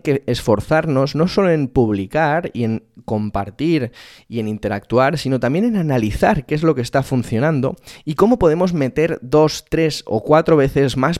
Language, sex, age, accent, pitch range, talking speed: Spanish, male, 20-39, Spanish, 115-155 Hz, 170 wpm